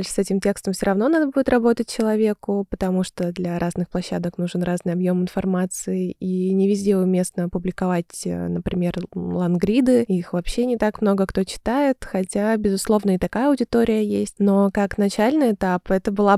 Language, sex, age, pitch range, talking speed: Russian, female, 20-39, 185-210 Hz, 160 wpm